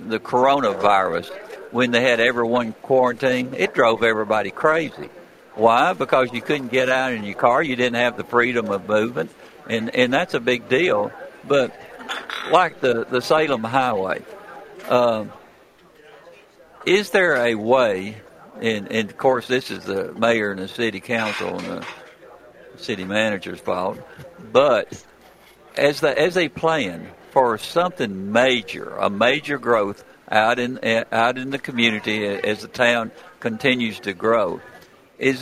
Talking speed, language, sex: 145 wpm, English, male